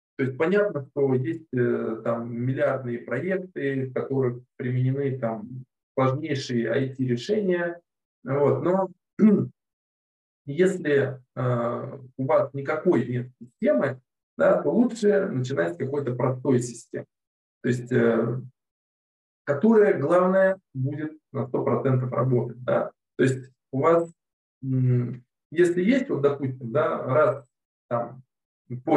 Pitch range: 125-175 Hz